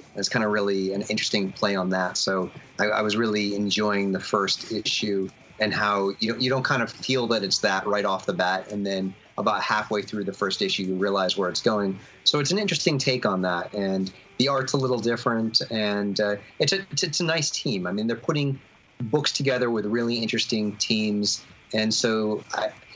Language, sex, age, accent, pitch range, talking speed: English, male, 30-49, American, 100-125 Hz, 210 wpm